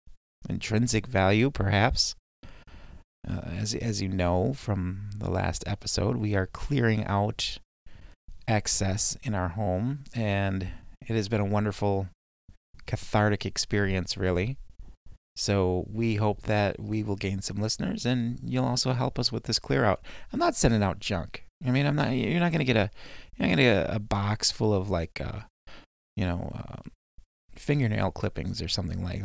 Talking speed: 160 wpm